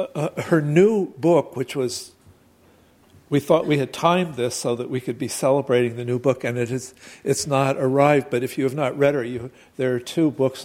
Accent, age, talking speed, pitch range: American, 60-79, 220 wpm, 125-150 Hz